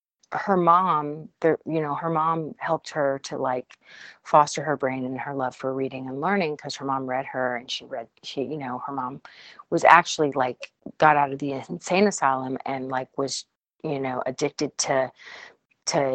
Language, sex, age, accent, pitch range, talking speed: English, female, 40-59, American, 135-165 Hz, 190 wpm